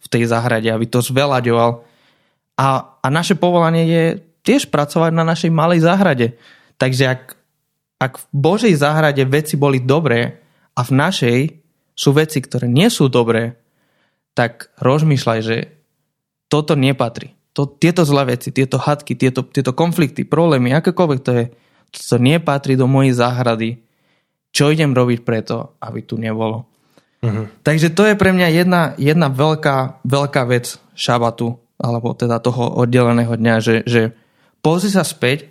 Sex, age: male, 20-39